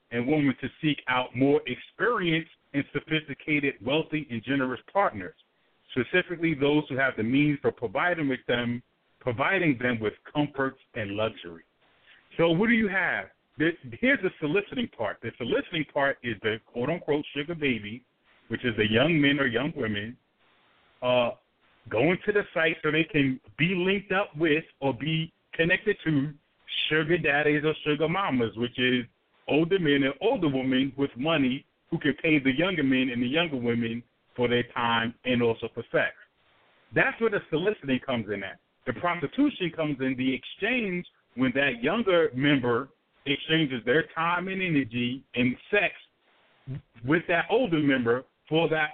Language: English